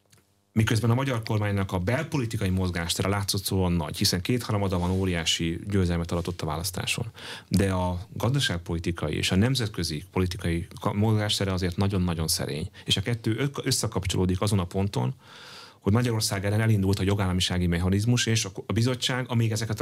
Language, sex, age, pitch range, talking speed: Hungarian, male, 30-49, 95-115 Hz, 145 wpm